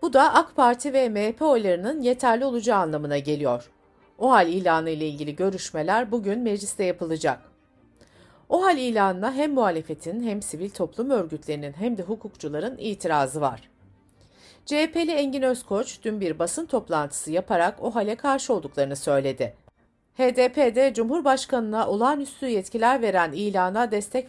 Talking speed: 125 wpm